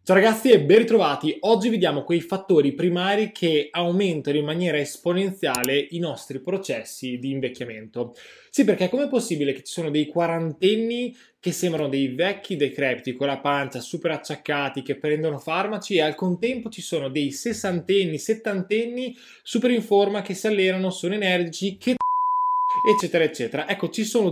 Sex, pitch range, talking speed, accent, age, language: male, 145-200 Hz, 160 wpm, native, 20-39, Italian